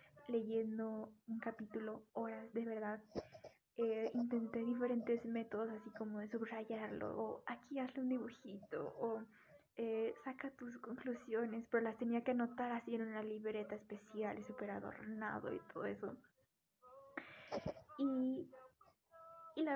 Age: 10-29